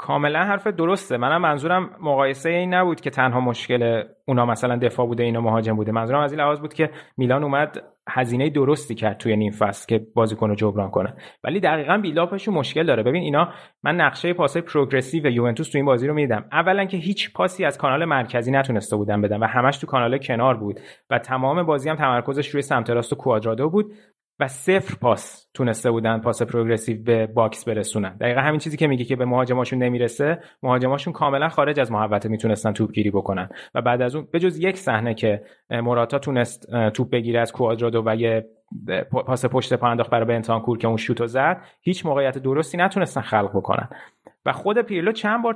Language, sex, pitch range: Persian, male, 115-175 Hz